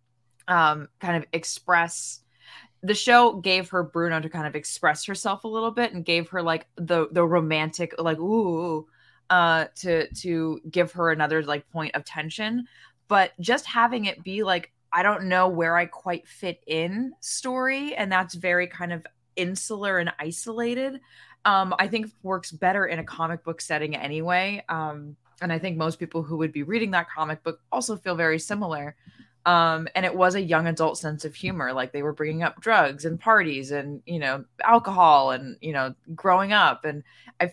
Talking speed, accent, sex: 185 wpm, American, female